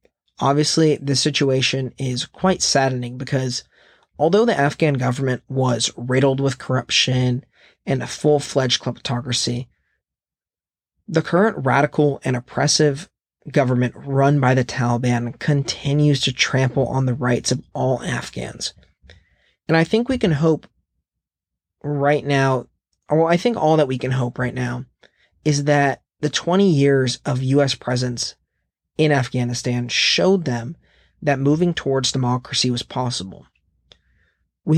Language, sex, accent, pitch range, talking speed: English, male, American, 125-150 Hz, 130 wpm